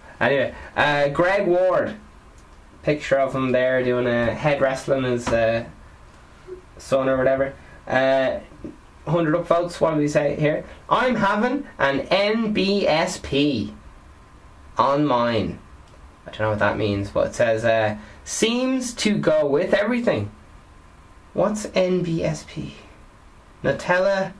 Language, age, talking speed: English, 20-39, 120 wpm